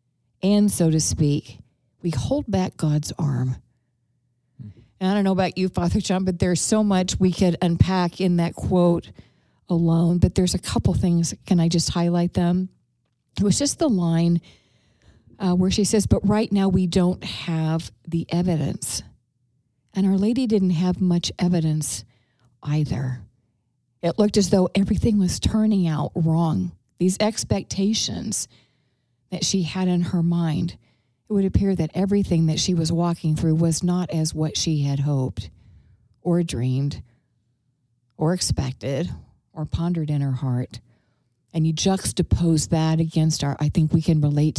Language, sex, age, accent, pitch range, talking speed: English, female, 50-69, American, 125-180 Hz, 155 wpm